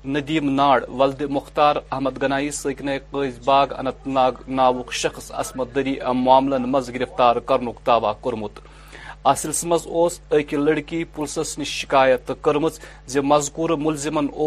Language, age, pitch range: Urdu, 40-59, 135-150 Hz